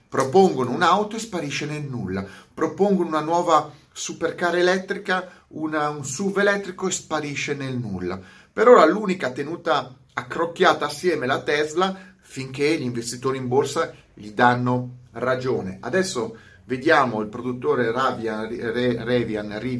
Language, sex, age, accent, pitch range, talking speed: Italian, male, 30-49, native, 115-180 Hz, 120 wpm